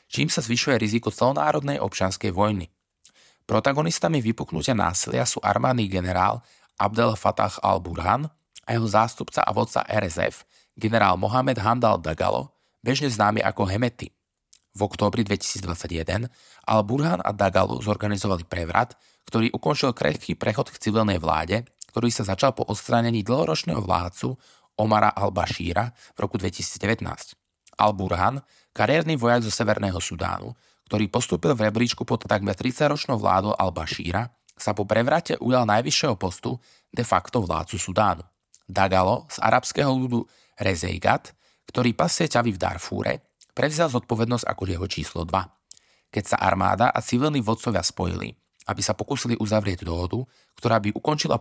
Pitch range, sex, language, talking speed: 95-120 Hz, male, Slovak, 130 wpm